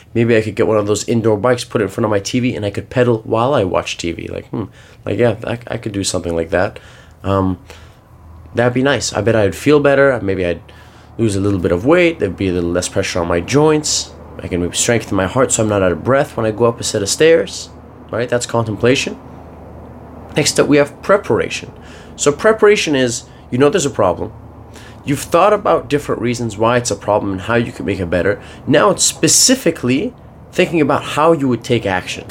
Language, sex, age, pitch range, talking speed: English, male, 20-39, 95-125 Hz, 230 wpm